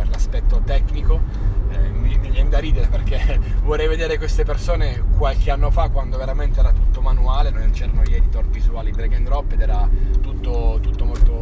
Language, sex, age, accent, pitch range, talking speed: Italian, male, 20-39, native, 75-100 Hz, 175 wpm